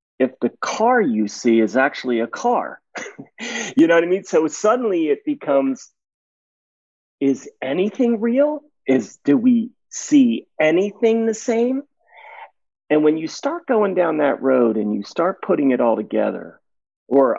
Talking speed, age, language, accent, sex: 150 wpm, 40-59, English, American, male